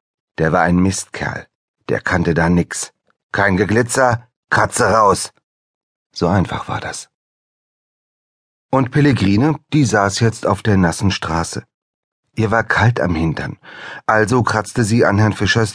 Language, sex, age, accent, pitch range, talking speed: German, male, 40-59, German, 85-115 Hz, 135 wpm